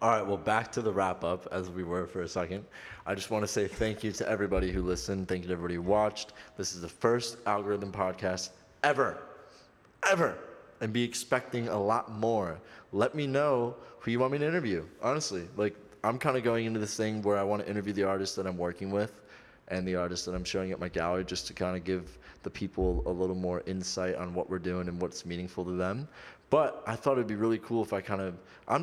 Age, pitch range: 20-39, 85-105 Hz